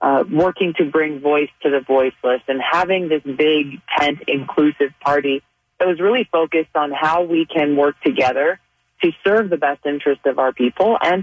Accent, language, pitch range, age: American, English, 145-175 Hz, 30-49